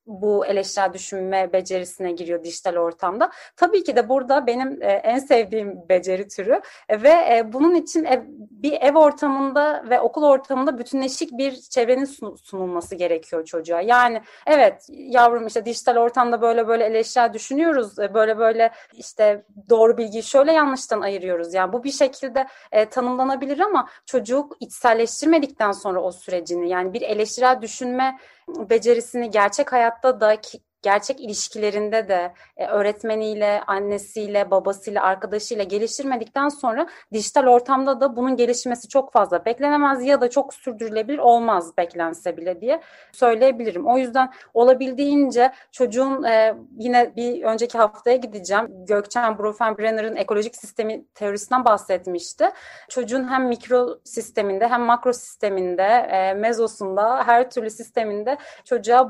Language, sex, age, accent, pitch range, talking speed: Turkish, female, 30-49, native, 205-265 Hz, 125 wpm